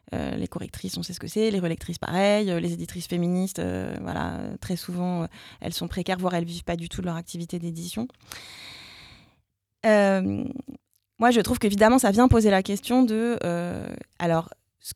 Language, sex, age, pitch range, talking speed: French, female, 20-39, 185-225 Hz, 185 wpm